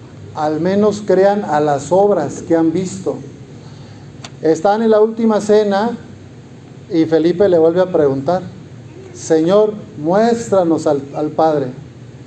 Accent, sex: Mexican, male